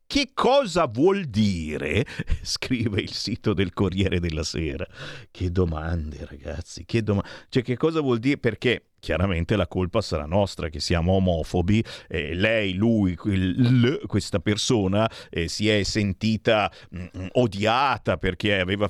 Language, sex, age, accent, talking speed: Italian, male, 50-69, native, 145 wpm